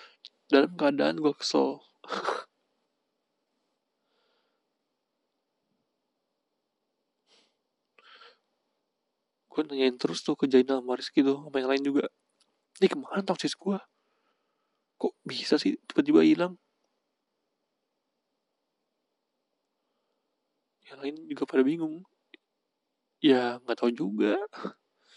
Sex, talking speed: male, 85 wpm